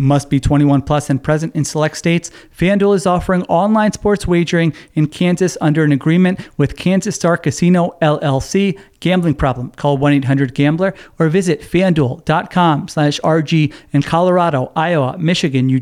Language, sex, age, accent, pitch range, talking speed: English, male, 40-59, American, 145-180 Hz, 150 wpm